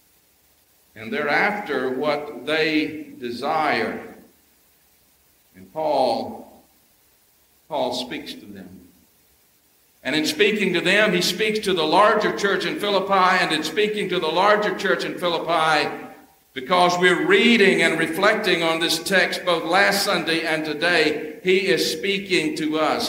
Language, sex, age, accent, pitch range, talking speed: English, male, 60-79, American, 165-220 Hz, 135 wpm